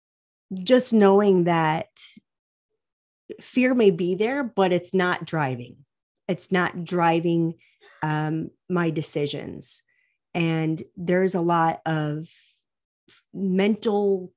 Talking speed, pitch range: 100 wpm, 160-195 Hz